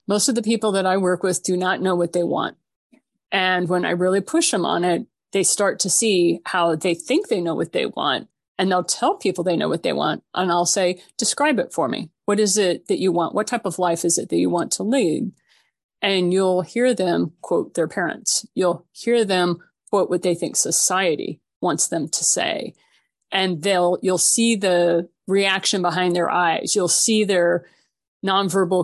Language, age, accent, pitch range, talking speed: English, 30-49, American, 175-205 Hz, 205 wpm